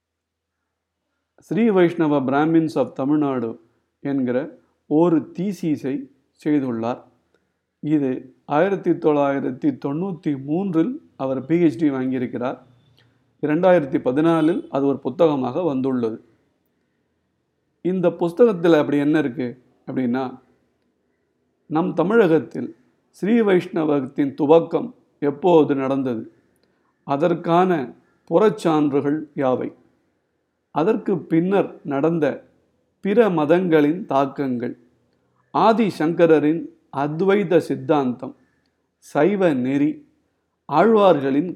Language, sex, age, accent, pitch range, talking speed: Tamil, male, 50-69, native, 135-175 Hz, 70 wpm